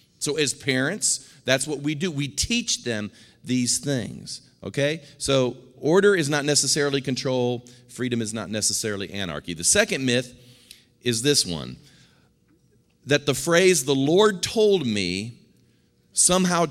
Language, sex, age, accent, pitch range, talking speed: English, male, 40-59, American, 105-145 Hz, 135 wpm